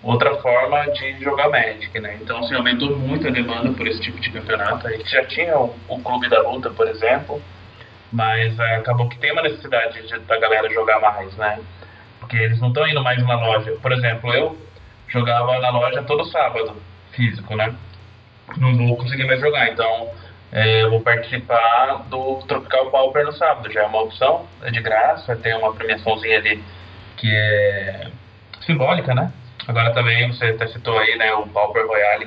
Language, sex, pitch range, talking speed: Portuguese, male, 105-130 Hz, 185 wpm